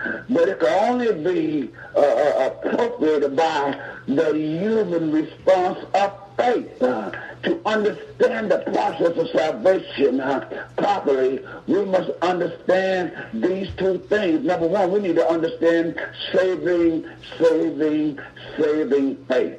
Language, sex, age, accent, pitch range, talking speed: English, male, 60-79, American, 155-245 Hz, 115 wpm